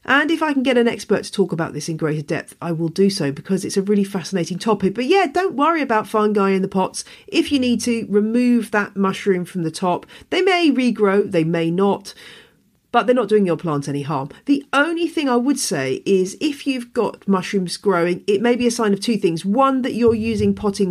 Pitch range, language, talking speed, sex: 165-220 Hz, English, 235 wpm, female